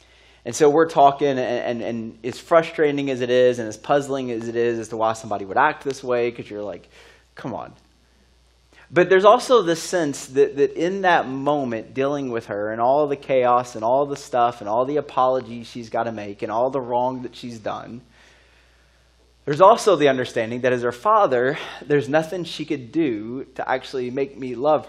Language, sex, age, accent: English, male, 20-39, American